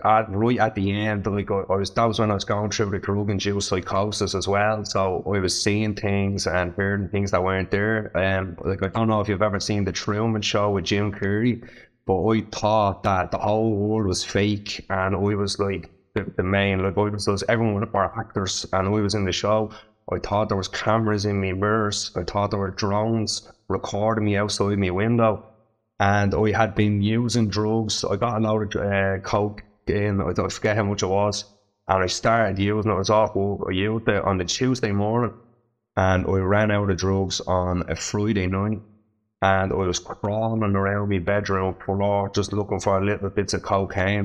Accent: Irish